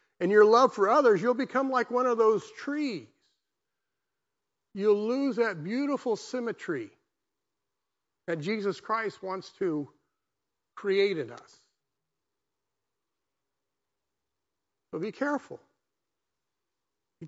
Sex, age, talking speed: male, 50-69, 100 wpm